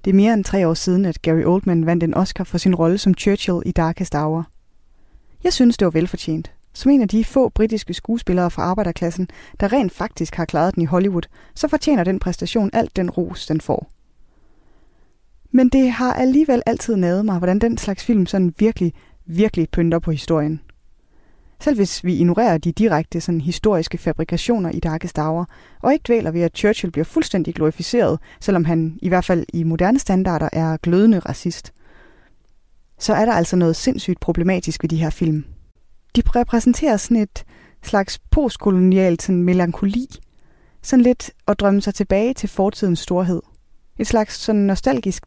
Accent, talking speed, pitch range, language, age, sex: native, 175 wpm, 170-215 Hz, Danish, 20-39, female